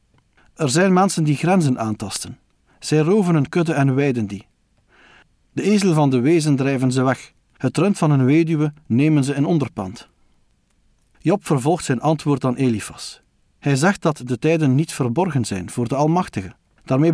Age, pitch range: 50-69, 125-160 Hz